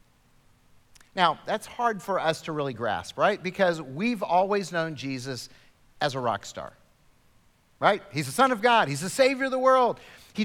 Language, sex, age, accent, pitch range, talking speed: English, male, 50-69, American, 150-230 Hz, 180 wpm